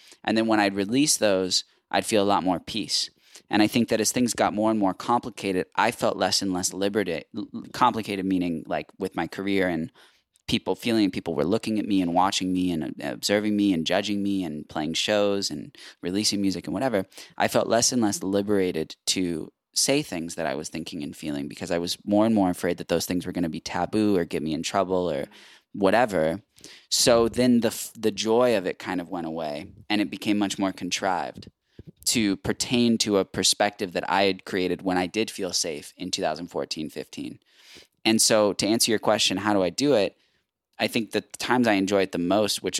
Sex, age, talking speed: male, 20-39, 215 wpm